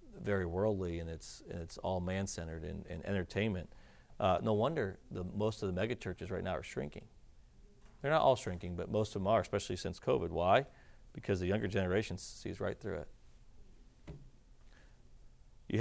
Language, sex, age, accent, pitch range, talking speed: English, male, 40-59, American, 100-130 Hz, 165 wpm